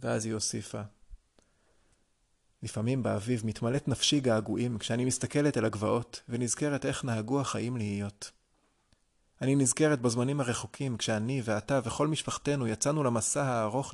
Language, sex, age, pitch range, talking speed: Hebrew, male, 30-49, 110-135 Hz, 120 wpm